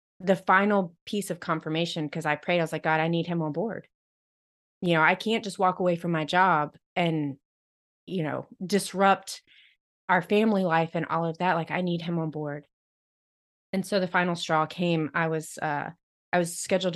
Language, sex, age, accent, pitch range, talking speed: English, female, 30-49, American, 155-185 Hz, 200 wpm